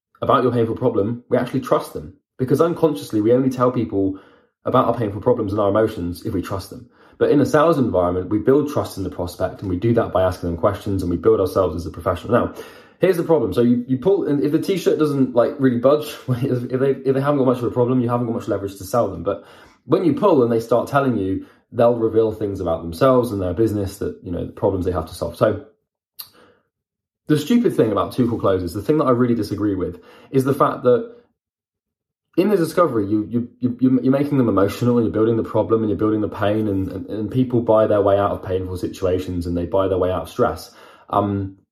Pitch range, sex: 100-130 Hz, male